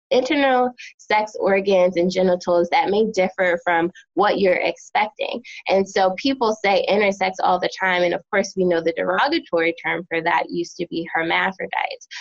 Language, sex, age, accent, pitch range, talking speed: English, female, 20-39, American, 175-215 Hz, 165 wpm